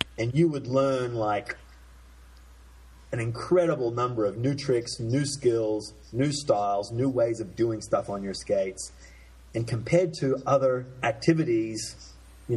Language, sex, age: English, male, 30-49